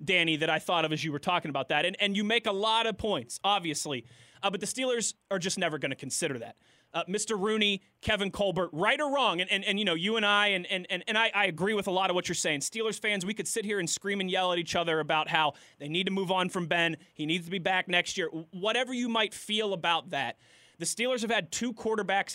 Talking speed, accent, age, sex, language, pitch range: 270 wpm, American, 20-39, male, English, 165-210 Hz